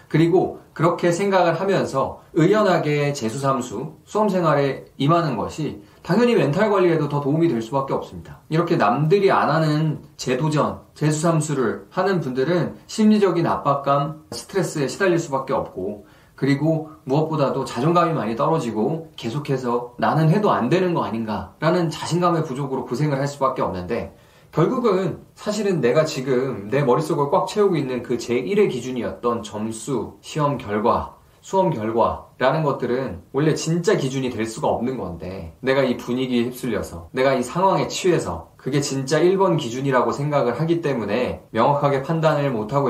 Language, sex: Korean, male